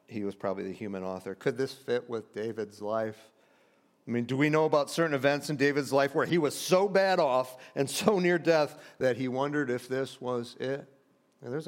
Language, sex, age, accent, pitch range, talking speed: English, male, 50-69, American, 115-155 Hz, 215 wpm